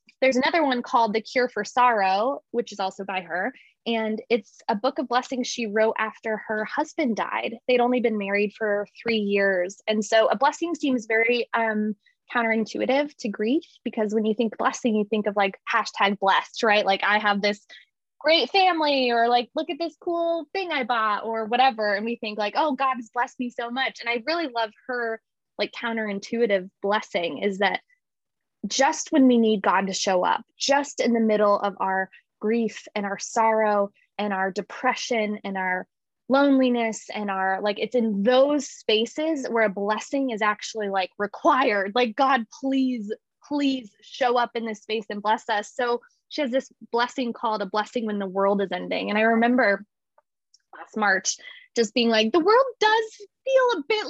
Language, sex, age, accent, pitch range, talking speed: English, female, 10-29, American, 210-270 Hz, 185 wpm